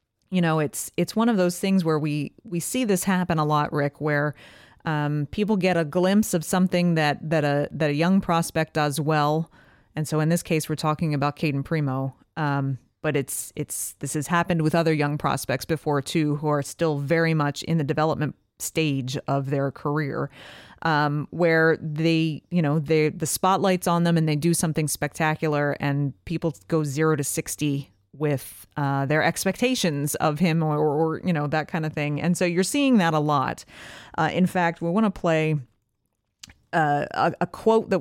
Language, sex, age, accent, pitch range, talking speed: English, female, 30-49, American, 145-170 Hz, 195 wpm